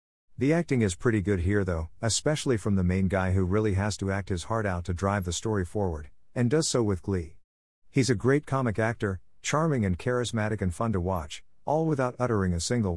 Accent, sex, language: American, male, English